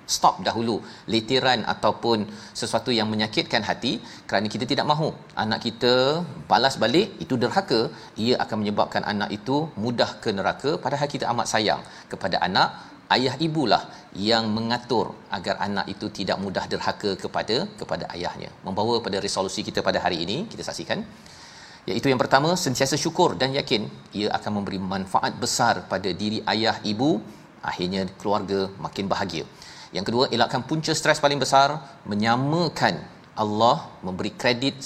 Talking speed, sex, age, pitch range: 145 wpm, male, 40-59, 105-130 Hz